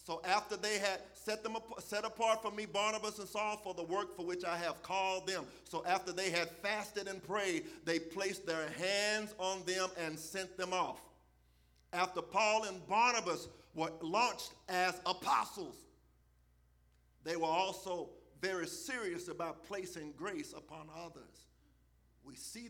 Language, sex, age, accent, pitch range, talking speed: English, male, 50-69, American, 160-210 Hz, 155 wpm